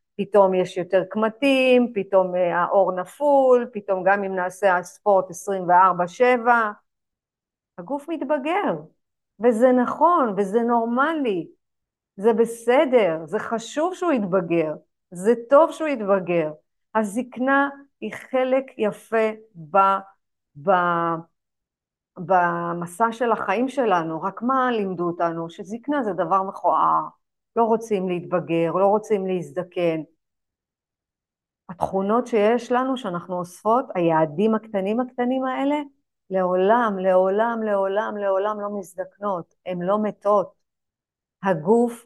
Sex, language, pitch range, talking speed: female, Hebrew, 180-235 Hz, 105 wpm